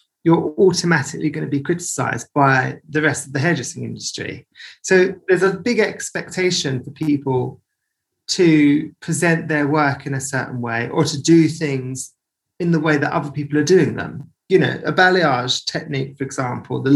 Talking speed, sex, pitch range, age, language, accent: 170 wpm, male, 140-165 Hz, 30-49, English, British